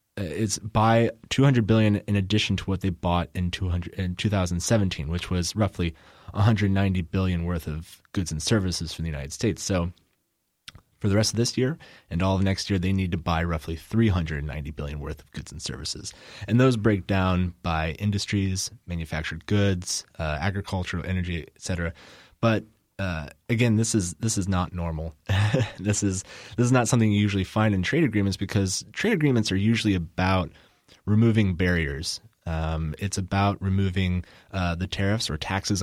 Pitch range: 85-105 Hz